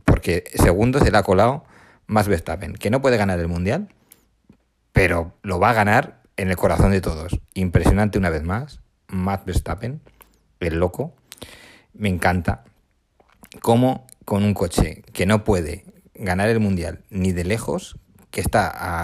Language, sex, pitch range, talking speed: Spanish, male, 90-105 Hz, 160 wpm